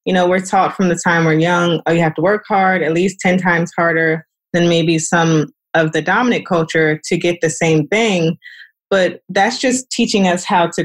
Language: English